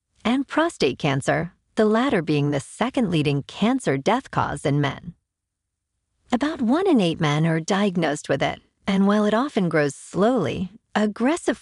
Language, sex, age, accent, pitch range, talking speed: English, female, 50-69, American, 150-230 Hz, 155 wpm